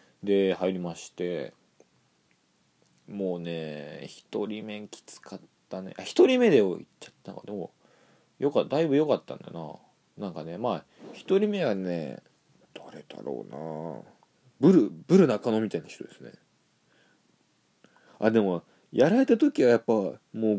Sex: male